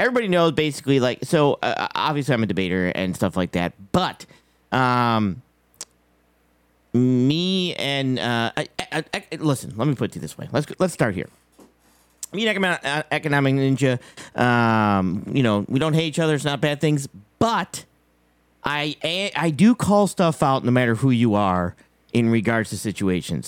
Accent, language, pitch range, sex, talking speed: American, English, 105-155 Hz, male, 175 wpm